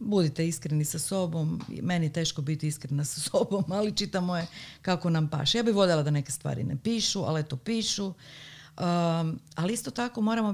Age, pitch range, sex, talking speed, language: 50-69, 150-190 Hz, female, 190 wpm, Croatian